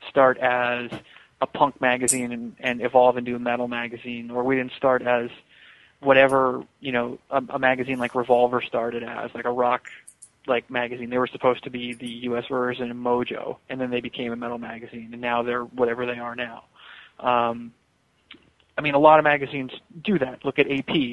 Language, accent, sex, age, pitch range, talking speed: English, American, male, 20-39, 120-140 Hz, 195 wpm